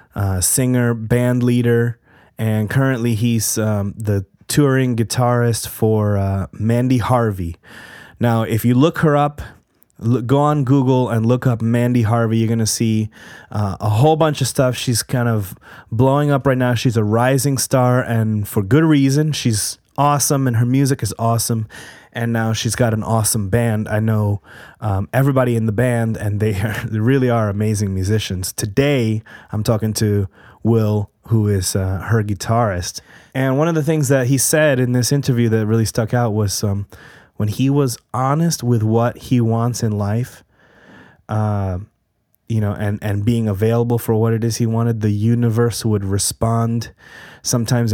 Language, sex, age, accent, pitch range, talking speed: English, male, 20-39, American, 105-125 Hz, 170 wpm